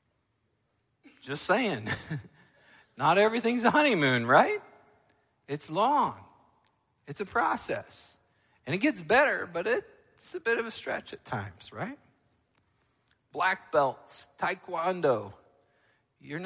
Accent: American